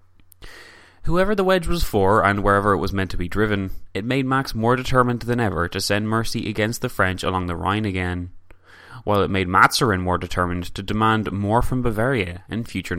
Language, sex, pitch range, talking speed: English, male, 90-120 Hz, 200 wpm